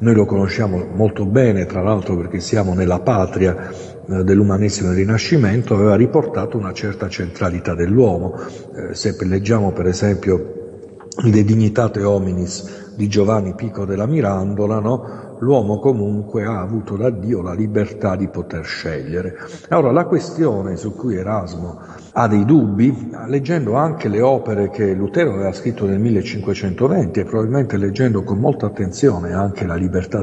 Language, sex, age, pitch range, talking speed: Italian, male, 50-69, 95-120 Hz, 140 wpm